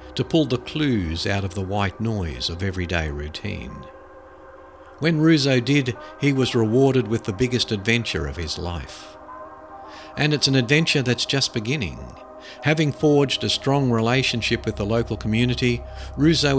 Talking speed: 150 wpm